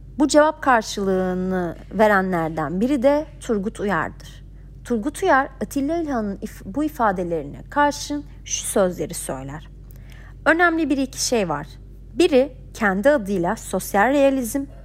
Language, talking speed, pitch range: Turkish, 115 wpm, 190-300 Hz